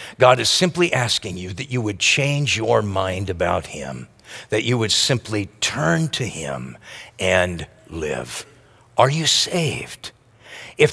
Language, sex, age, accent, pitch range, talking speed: English, male, 50-69, American, 105-160 Hz, 145 wpm